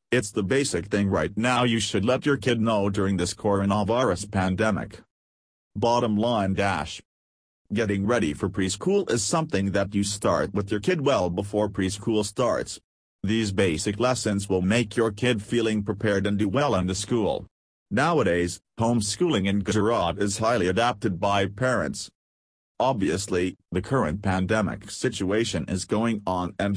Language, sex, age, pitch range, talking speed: English, male, 40-59, 95-120 Hz, 150 wpm